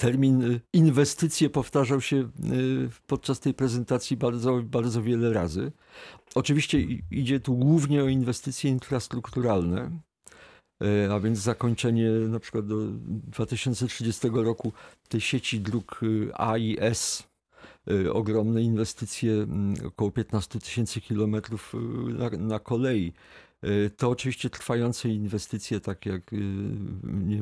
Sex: male